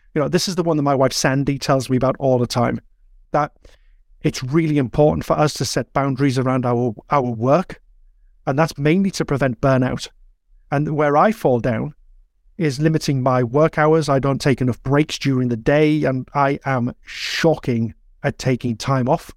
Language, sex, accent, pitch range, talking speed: English, male, British, 130-160 Hz, 190 wpm